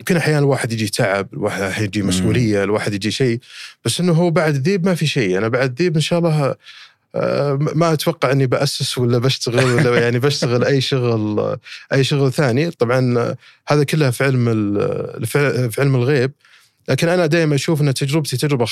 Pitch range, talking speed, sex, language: 110-145 Hz, 175 wpm, male, Arabic